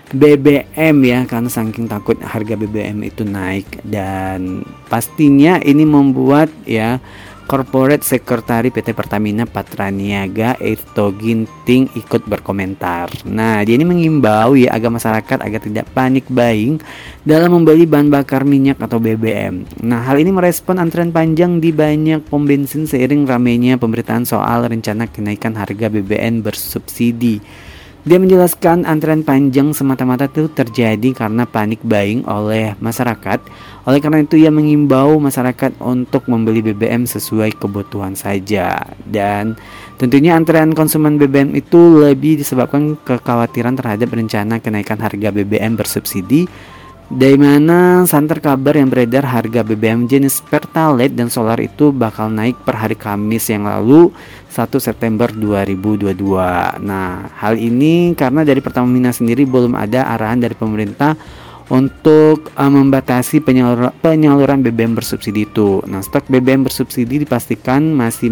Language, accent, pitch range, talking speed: Indonesian, native, 110-140 Hz, 130 wpm